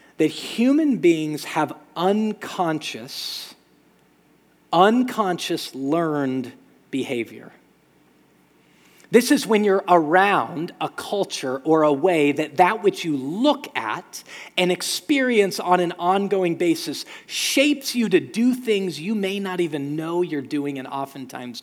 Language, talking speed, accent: English, 120 wpm, American